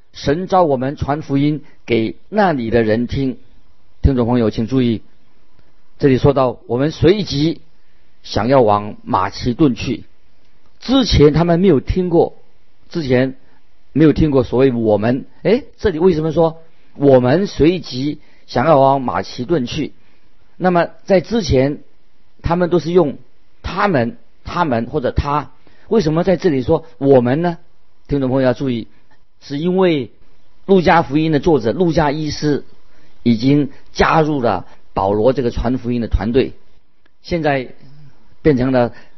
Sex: male